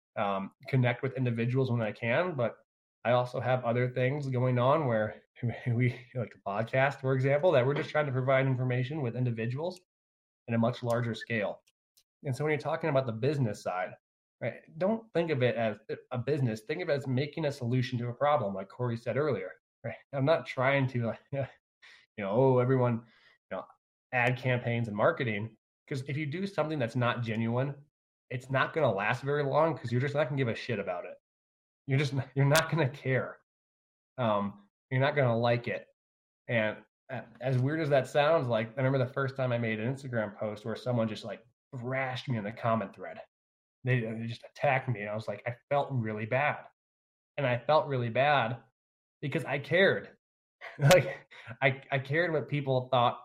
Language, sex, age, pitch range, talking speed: English, male, 20-39, 115-140 Hz, 200 wpm